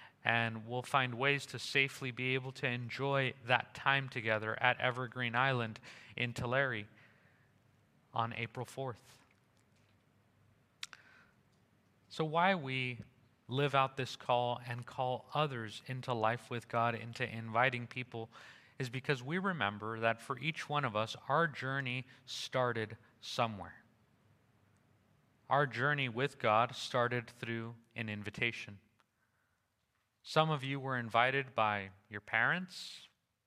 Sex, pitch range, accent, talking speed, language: male, 115-140 Hz, American, 120 wpm, English